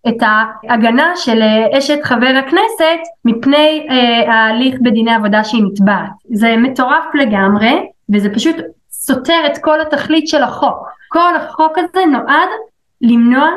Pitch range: 230-315 Hz